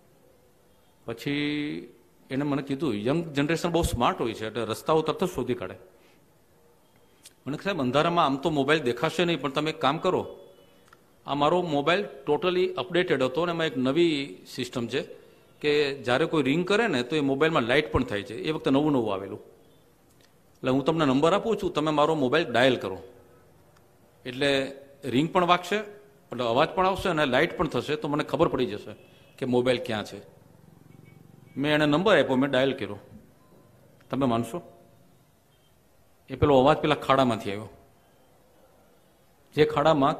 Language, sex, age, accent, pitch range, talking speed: Gujarati, male, 50-69, native, 130-160 Hz, 160 wpm